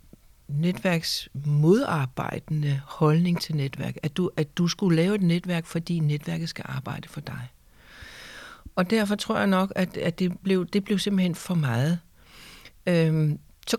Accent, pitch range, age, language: native, 155-195 Hz, 60-79, Danish